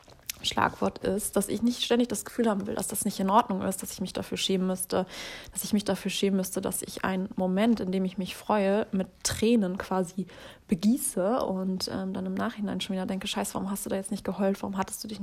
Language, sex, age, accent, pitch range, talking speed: German, female, 20-39, German, 190-215 Hz, 240 wpm